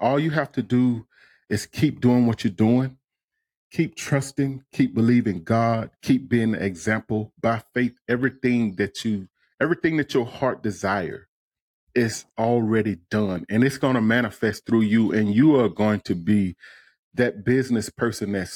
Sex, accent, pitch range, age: male, American, 105-125 Hz, 40-59